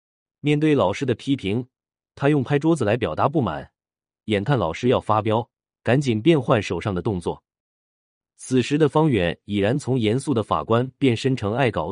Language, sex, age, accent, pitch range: Chinese, male, 30-49, native, 95-135 Hz